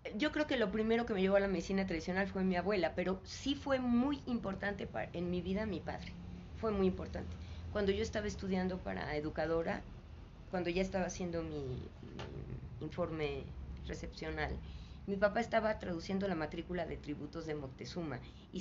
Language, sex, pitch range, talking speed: Spanish, female, 155-200 Hz, 175 wpm